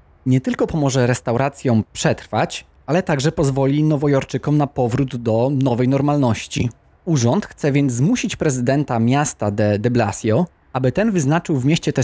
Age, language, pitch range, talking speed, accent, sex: 20-39, Polish, 120-150 Hz, 145 wpm, native, male